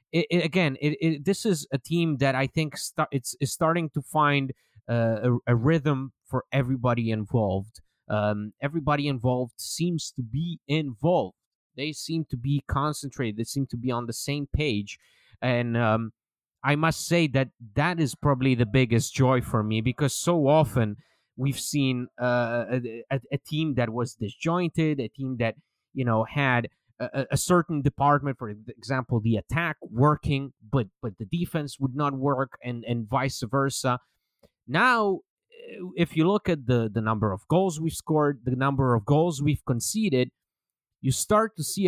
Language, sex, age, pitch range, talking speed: English, male, 30-49, 120-150 Hz, 170 wpm